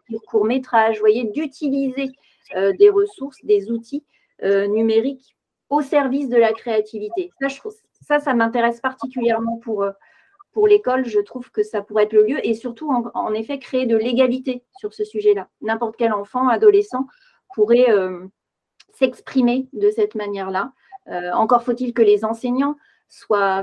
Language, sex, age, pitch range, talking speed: French, female, 40-59, 210-280 Hz, 155 wpm